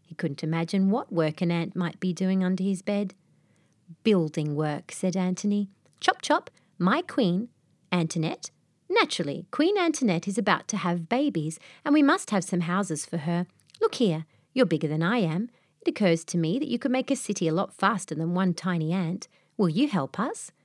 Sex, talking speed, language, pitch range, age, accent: female, 190 wpm, English, 170-240 Hz, 30-49, Australian